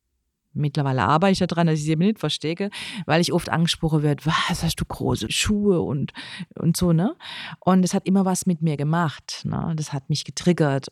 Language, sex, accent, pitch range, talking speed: German, female, German, 160-200 Hz, 200 wpm